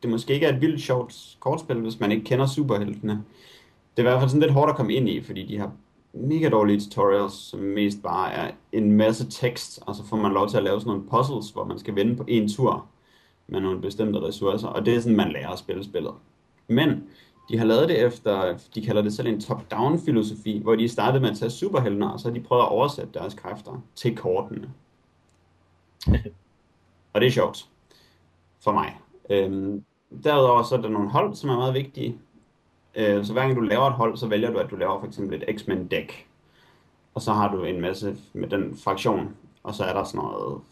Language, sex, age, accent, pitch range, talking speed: Danish, male, 30-49, native, 105-125 Hz, 215 wpm